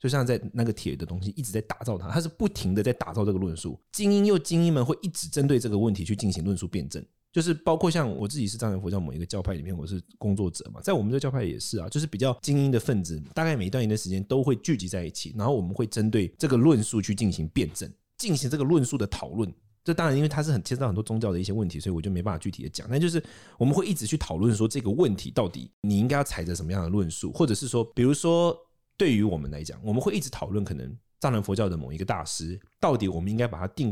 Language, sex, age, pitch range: Chinese, male, 30-49, 95-140 Hz